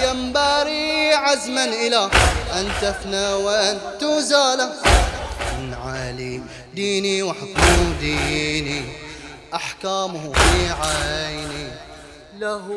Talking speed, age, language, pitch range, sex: 75 wpm, 20-39, English, 195-275 Hz, male